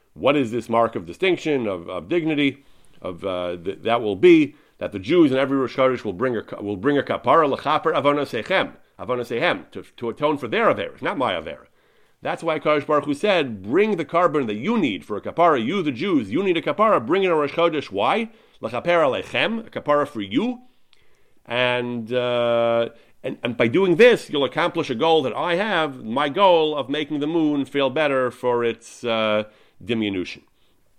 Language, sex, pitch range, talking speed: English, male, 115-155 Hz, 190 wpm